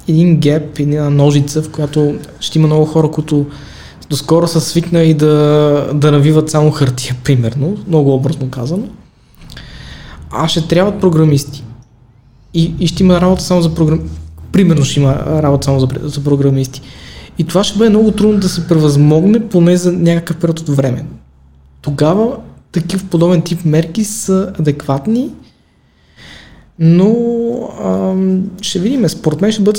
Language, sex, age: Bulgarian, male, 20-39